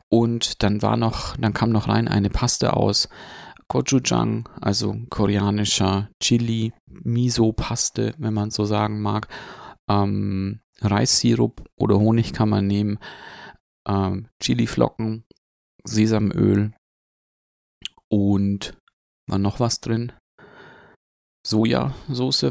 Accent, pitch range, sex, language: German, 95-115 Hz, male, German